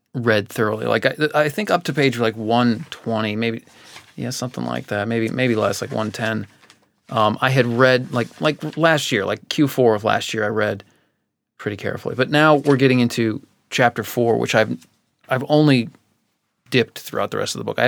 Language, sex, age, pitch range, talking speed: English, male, 30-49, 110-140 Hz, 190 wpm